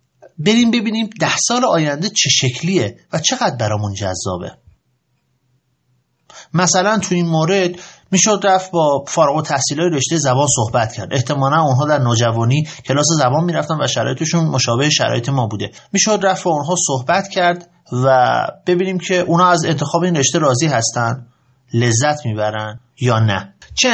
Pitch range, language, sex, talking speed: 130-190 Hz, Persian, male, 145 wpm